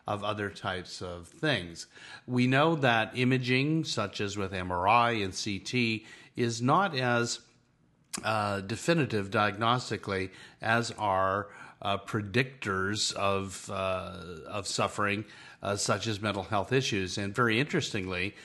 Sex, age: male, 50-69